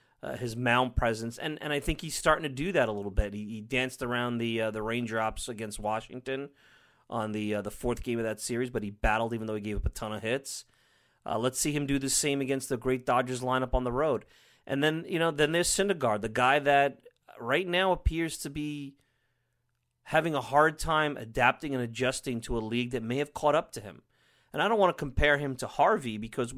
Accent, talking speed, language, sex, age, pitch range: American, 235 wpm, English, male, 30-49, 110-135 Hz